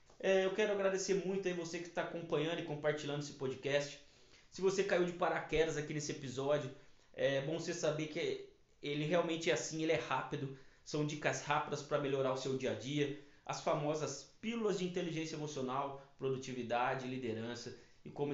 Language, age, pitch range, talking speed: Portuguese, 20-39, 130-160 Hz, 175 wpm